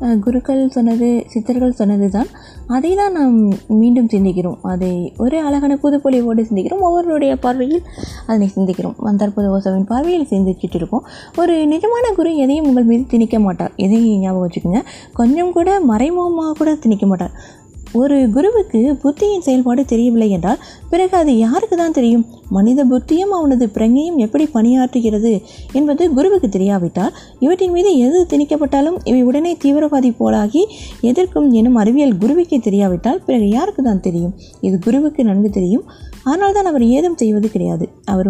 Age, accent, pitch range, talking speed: 20-39, native, 215-285 Hz, 140 wpm